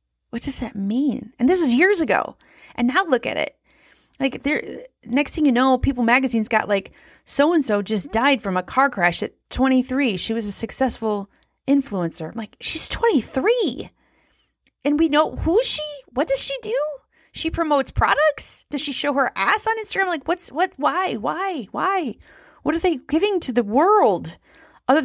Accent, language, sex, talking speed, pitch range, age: American, English, female, 185 wpm, 210-310 Hz, 30-49